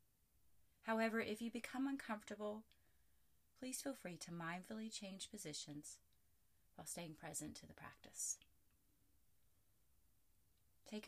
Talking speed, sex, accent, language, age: 105 wpm, female, American, English, 30-49